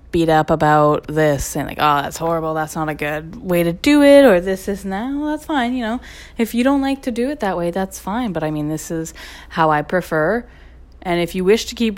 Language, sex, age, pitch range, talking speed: English, female, 20-39, 155-200 Hz, 260 wpm